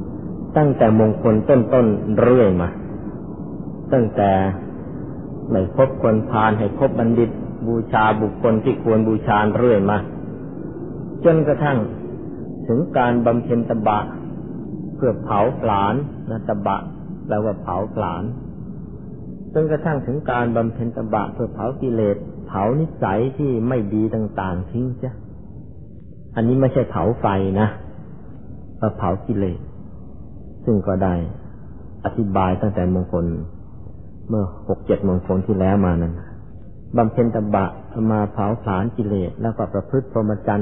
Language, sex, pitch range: Thai, male, 100-120 Hz